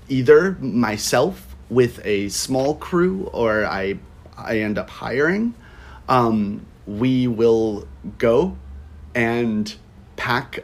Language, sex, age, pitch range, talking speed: English, male, 30-49, 85-120 Hz, 100 wpm